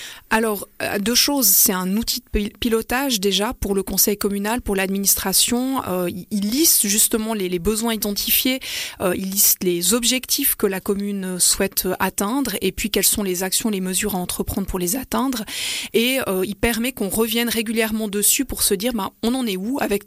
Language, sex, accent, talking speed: French, female, French, 185 wpm